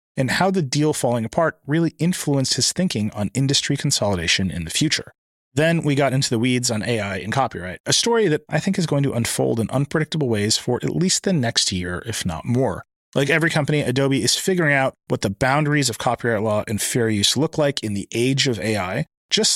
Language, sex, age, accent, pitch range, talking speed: English, male, 30-49, American, 110-150 Hz, 220 wpm